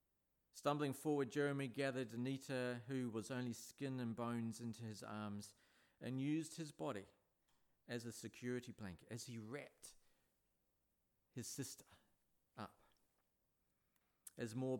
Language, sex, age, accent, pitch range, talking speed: English, male, 40-59, Australian, 100-125 Hz, 120 wpm